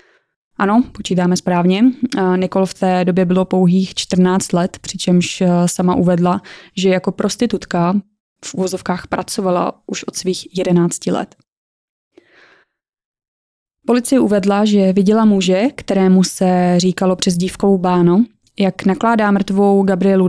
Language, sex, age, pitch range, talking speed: Czech, female, 20-39, 185-205 Hz, 120 wpm